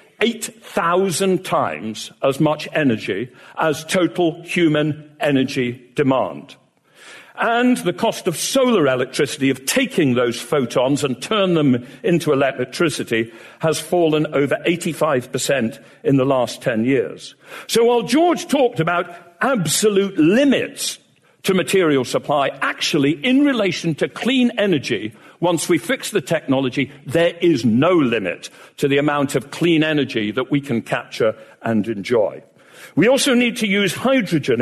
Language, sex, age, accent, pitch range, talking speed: English, male, 50-69, British, 135-190 Hz, 135 wpm